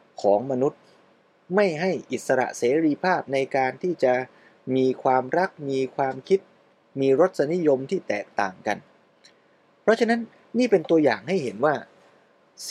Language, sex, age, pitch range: Thai, male, 20-39, 125-180 Hz